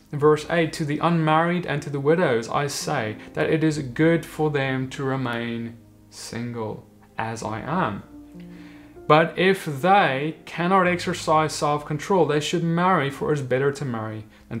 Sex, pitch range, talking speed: male, 140-170 Hz, 165 wpm